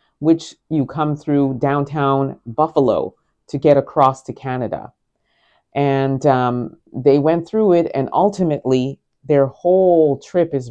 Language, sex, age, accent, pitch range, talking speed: English, female, 30-49, American, 135-175 Hz, 130 wpm